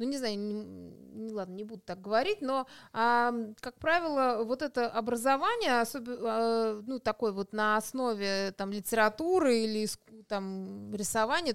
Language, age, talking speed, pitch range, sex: Russian, 20-39, 140 wpm, 220-275 Hz, female